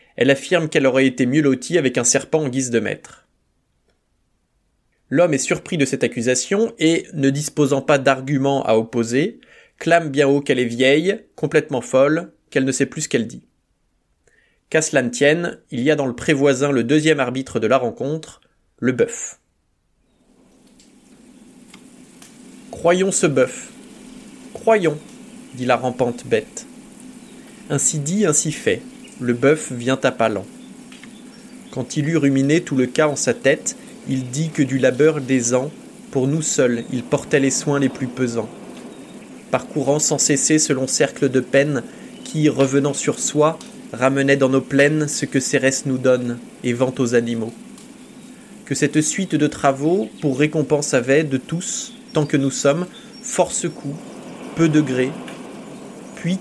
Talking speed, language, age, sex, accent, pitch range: 160 wpm, French, 20-39, male, French, 135-225 Hz